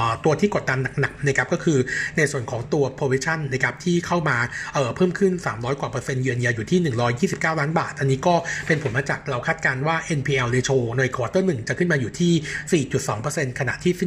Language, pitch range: Thai, 130-170 Hz